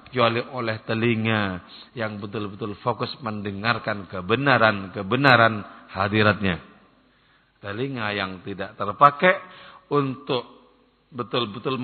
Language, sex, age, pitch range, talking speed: English, male, 50-69, 95-120 Hz, 75 wpm